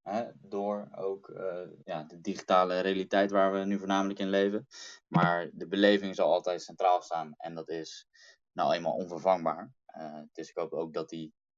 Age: 20-39